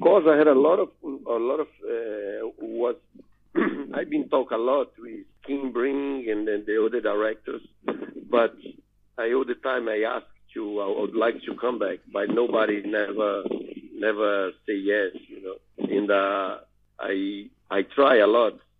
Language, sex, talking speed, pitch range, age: Danish, male, 170 wpm, 105-145 Hz, 50-69